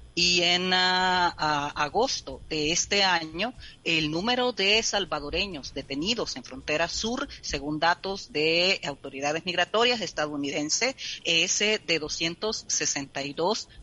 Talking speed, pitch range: 100 wpm, 155-215 Hz